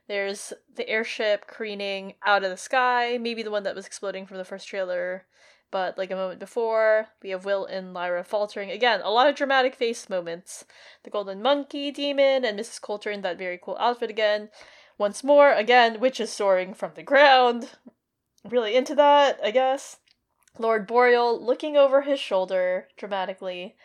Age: 10-29